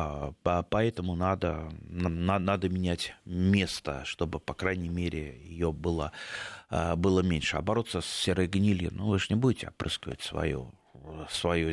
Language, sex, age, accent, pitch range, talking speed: Russian, male, 30-49, native, 85-105 Hz, 130 wpm